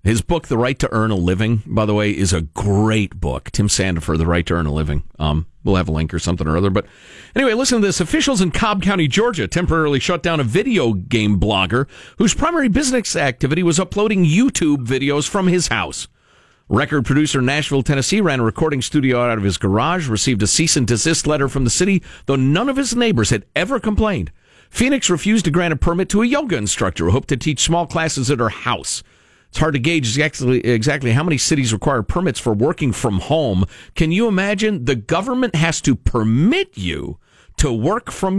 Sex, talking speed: male, 215 wpm